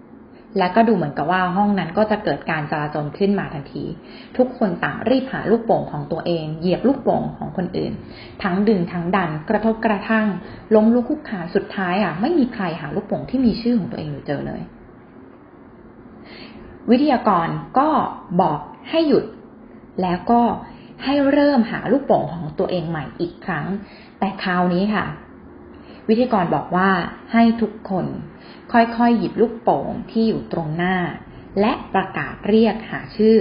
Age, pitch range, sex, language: 20-39, 175-230 Hz, female, Thai